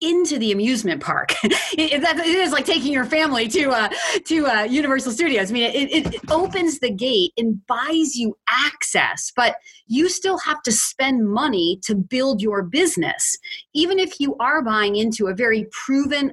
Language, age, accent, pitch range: English, 30-49, American, 210-285 Hz